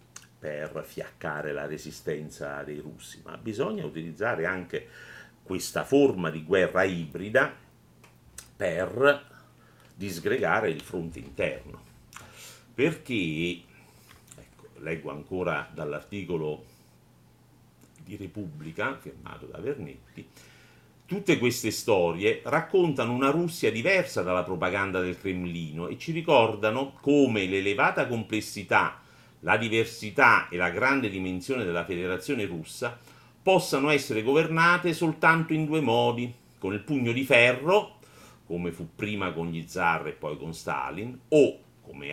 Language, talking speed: Italian, 115 wpm